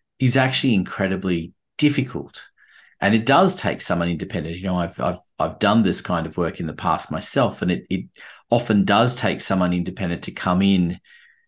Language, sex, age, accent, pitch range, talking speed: English, male, 30-49, Australian, 90-110 Hz, 185 wpm